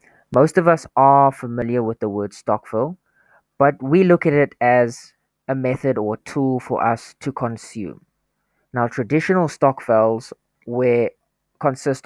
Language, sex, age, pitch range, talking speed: English, male, 20-39, 115-140 Hz, 155 wpm